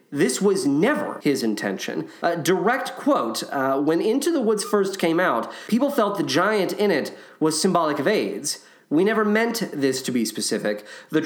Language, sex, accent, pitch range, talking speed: English, male, American, 155-245 Hz, 180 wpm